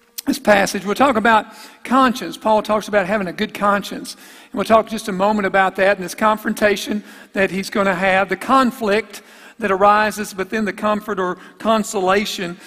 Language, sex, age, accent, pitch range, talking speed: English, male, 50-69, American, 200-250 Hz, 180 wpm